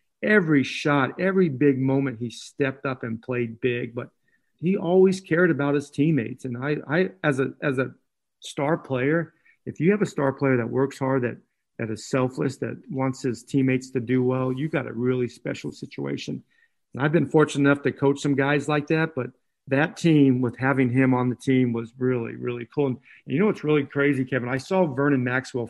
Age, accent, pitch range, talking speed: 50-69, American, 125-150 Hz, 205 wpm